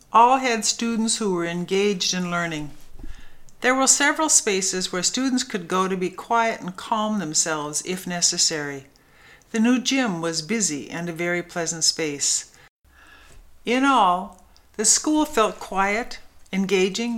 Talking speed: 145 wpm